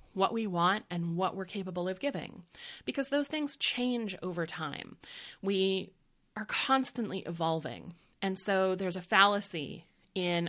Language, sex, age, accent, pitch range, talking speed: English, female, 30-49, American, 165-205 Hz, 145 wpm